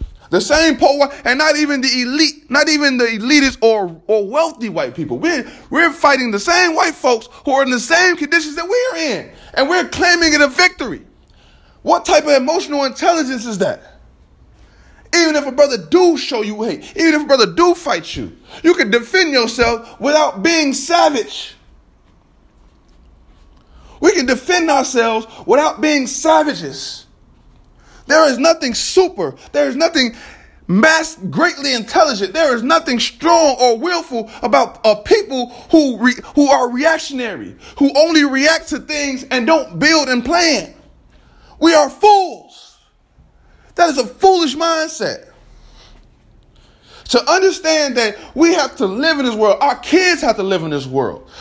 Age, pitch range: 20-39, 240-325 Hz